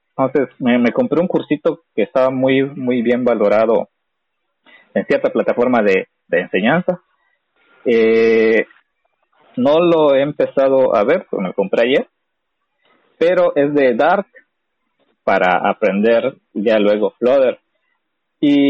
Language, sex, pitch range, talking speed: Spanish, male, 130-175 Hz, 130 wpm